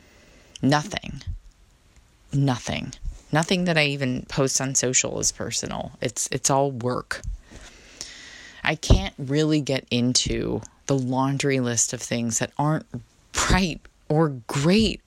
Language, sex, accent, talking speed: English, female, American, 120 wpm